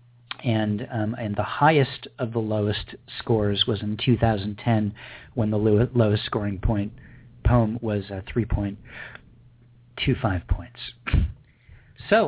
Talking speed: 140 wpm